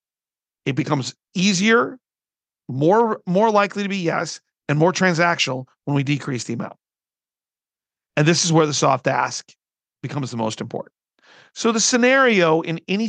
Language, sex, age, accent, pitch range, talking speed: English, male, 40-59, American, 150-195 Hz, 150 wpm